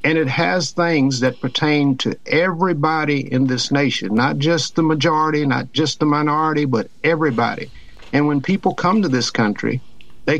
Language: English